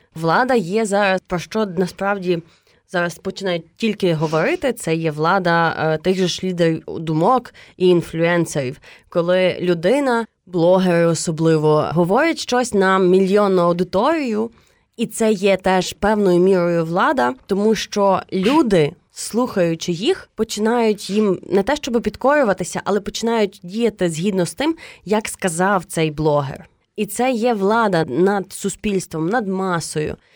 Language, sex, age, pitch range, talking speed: Ukrainian, female, 20-39, 165-210 Hz, 130 wpm